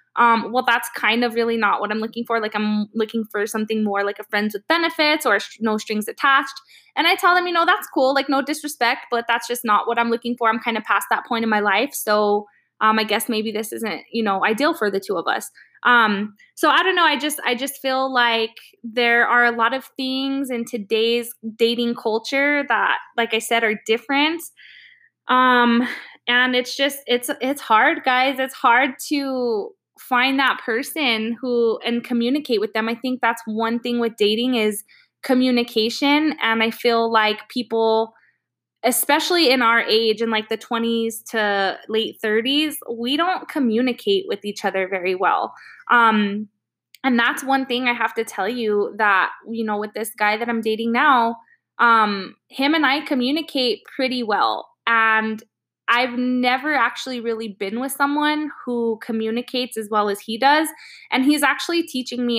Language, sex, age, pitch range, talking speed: English, female, 20-39, 220-260 Hz, 190 wpm